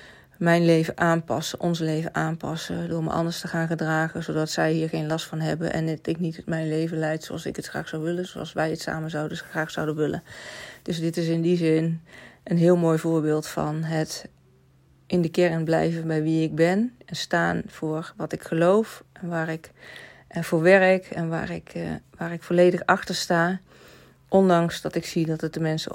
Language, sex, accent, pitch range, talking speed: Dutch, female, Dutch, 155-170 Hz, 205 wpm